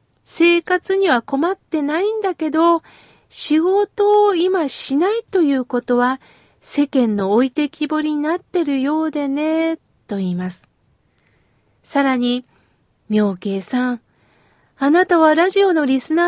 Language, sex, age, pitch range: Japanese, female, 40-59, 240-335 Hz